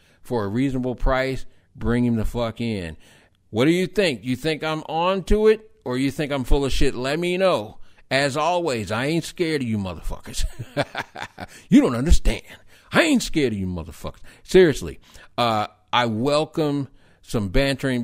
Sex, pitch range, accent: male, 115-145 Hz, American